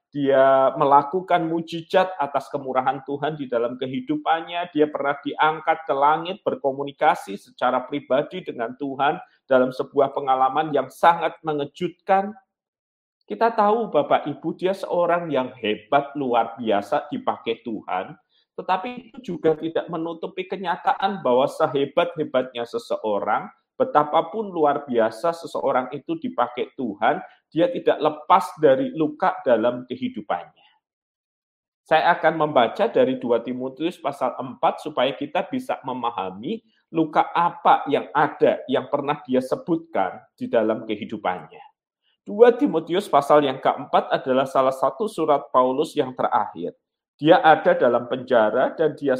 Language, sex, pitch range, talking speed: Malay, male, 135-175 Hz, 125 wpm